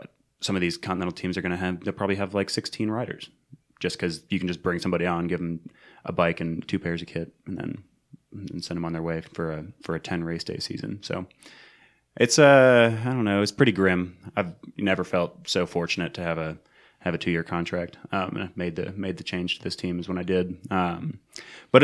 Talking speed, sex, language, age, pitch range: 240 wpm, male, English, 20-39, 85-100 Hz